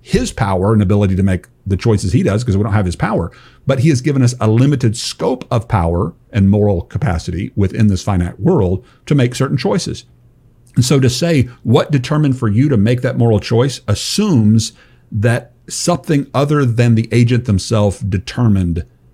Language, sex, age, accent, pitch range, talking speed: English, male, 50-69, American, 100-125 Hz, 185 wpm